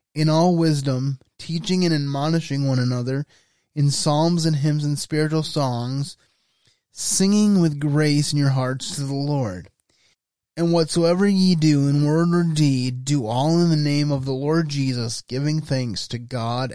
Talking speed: 160 wpm